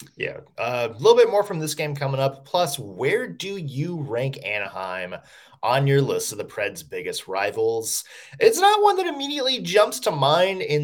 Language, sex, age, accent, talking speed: English, male, 20-39, American, 185 wpm